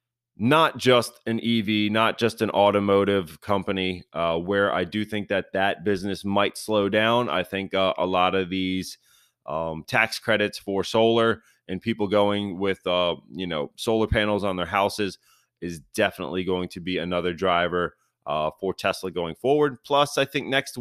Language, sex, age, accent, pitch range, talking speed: English, male, 30-49, American, 95-115 Hz, 175 wpm